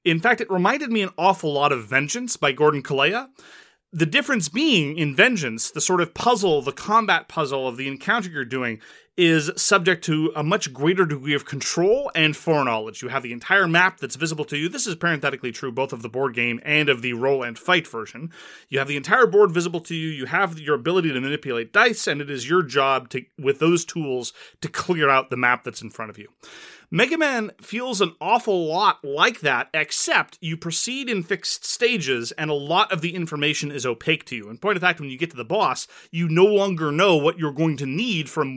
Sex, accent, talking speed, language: male, American, 225 wpm, English